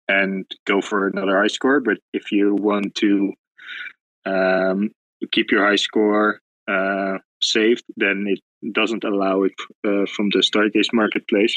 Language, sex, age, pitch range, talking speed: English, male, 20-39, 95-105 Hz, 150 wpm